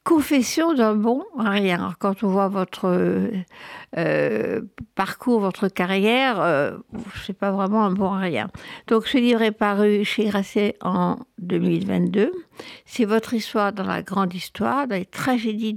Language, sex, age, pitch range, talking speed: French, female, 60-79, 185-225 Hz, 150 wpm